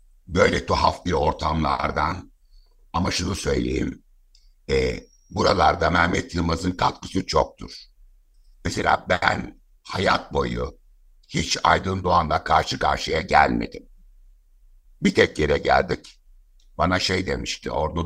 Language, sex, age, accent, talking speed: Turkish, male, 60-79, native, 105 wpm